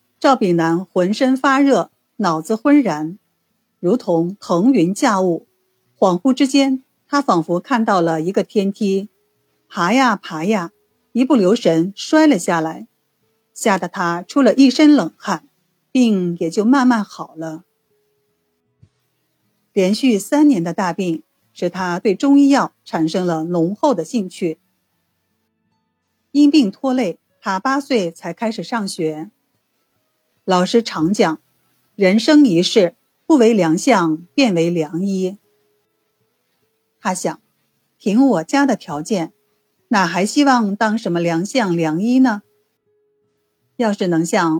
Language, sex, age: Chinese, female, 50-69